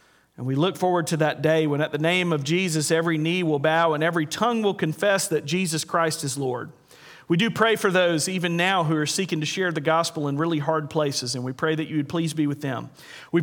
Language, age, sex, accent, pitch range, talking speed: English, 40-59, male, American, 145-170 Hz, 250 wpm